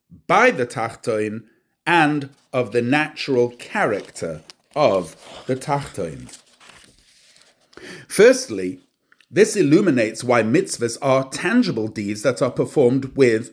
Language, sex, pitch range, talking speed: English, male, 120-155 Hz, 100 wpm